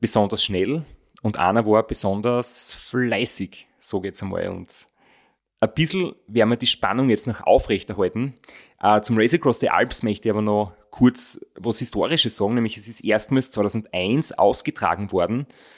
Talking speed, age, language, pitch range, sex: 155 wpm, 30-49, German, 105-125 Hz, male